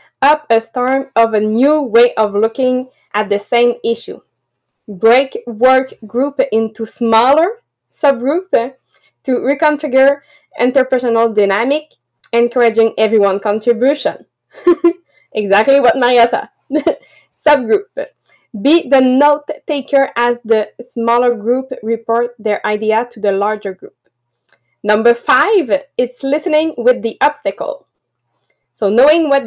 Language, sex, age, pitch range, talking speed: English, female, 20-39, 225-275 Hz, 115 wpm